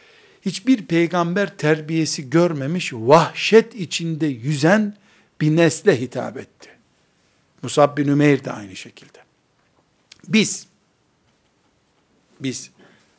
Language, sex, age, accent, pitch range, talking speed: Turkish, male, 60-79, native, 135-195 Hz, 85 wpm